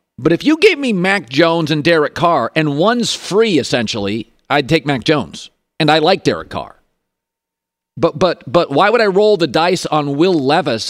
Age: 40-59